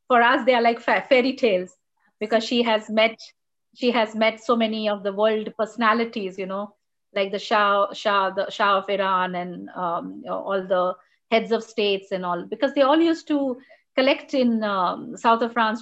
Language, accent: English, Indian